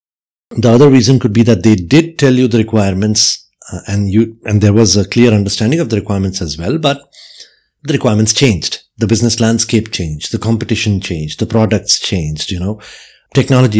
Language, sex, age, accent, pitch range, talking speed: English, male, 50-69, Indian, 105-125 Hz, 185 wpm